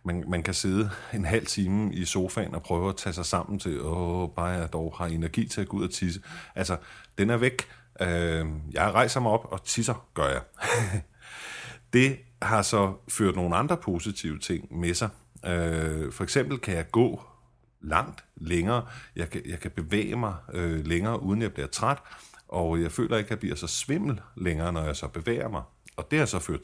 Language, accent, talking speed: Danish, native, 190 wpm